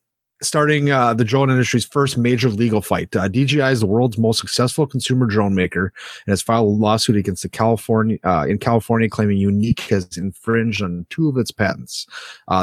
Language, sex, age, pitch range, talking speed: English, male, 30-49, 95-120 Hz, 195 wpm